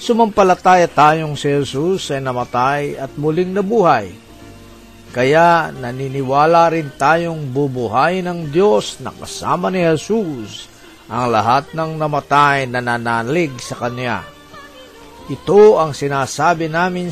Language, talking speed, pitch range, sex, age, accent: Filipino, 110 wpm, 125-180 Hz, male, 50-69, native